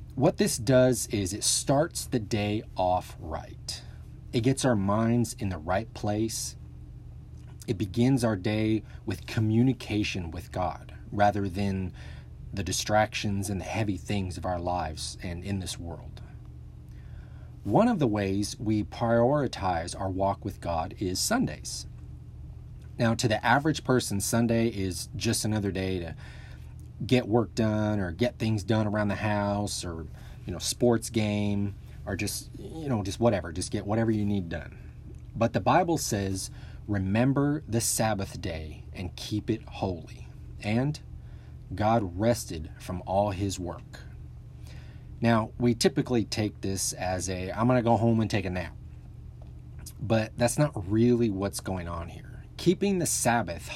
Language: English